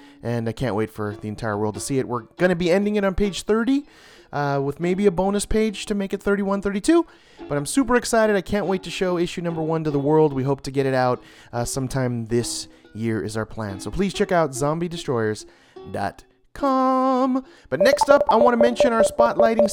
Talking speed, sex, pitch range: 220 wpm, male, 125-195 Hz